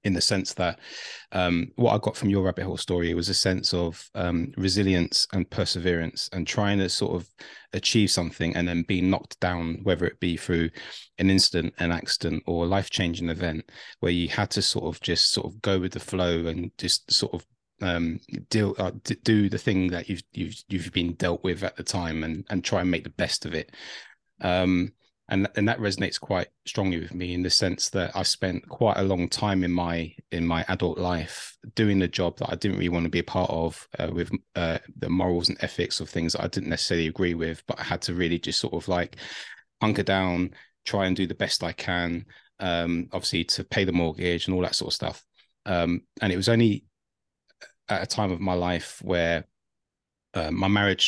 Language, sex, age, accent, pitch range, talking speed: English, male, 30-49, British, 85-95 Hz, 220 wpm